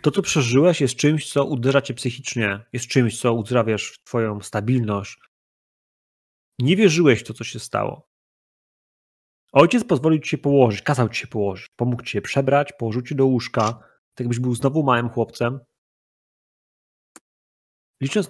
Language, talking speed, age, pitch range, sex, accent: Polish, 155 wpm, 30-49, 115-140 Hz, male, native